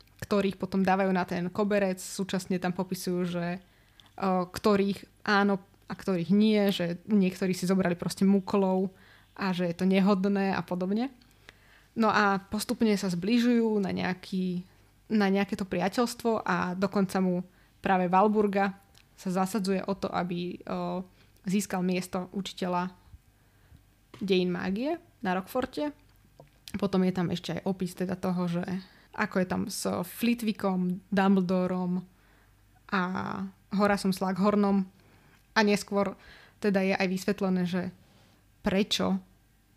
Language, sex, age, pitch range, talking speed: Slovak, female, 20-39, 180-205 Hz, 130 wpm